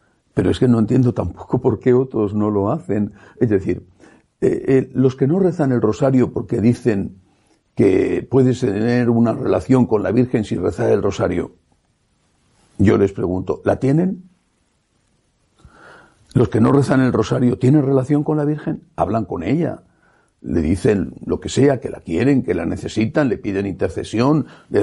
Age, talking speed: 60-79, 170 wpm